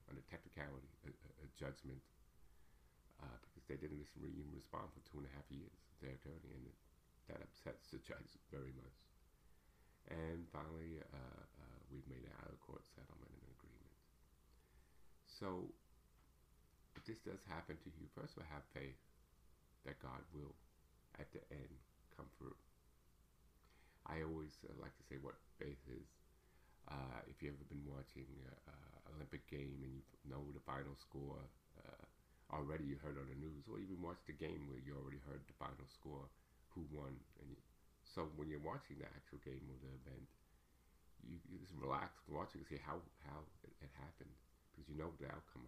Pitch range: 65-75 Hz